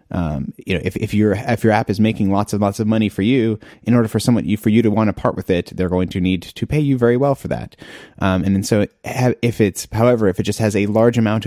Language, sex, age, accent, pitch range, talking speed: English, male, 30-49, American, 95-115 Hz, 295 wpm